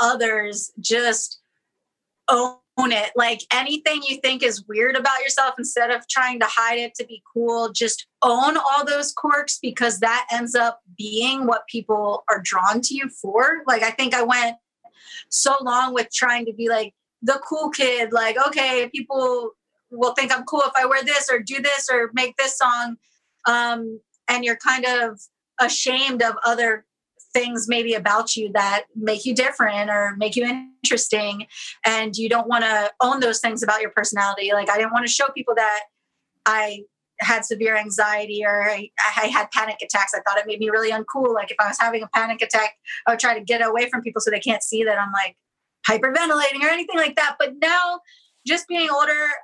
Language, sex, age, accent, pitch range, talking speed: English, female, 30-49, American, 220-265 Hz, 195 wpm